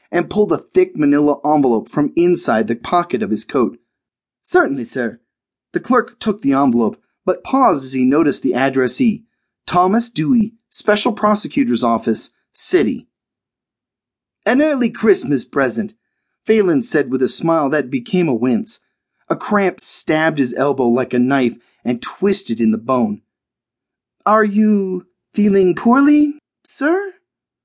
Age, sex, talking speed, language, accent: 30-49, male, 140 wpm, English, American